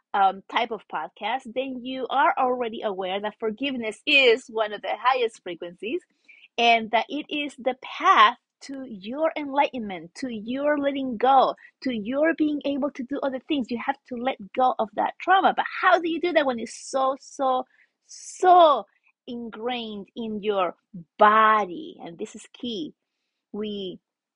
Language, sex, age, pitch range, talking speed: English, female, 30-49, 210-275 Hz, 165 wpm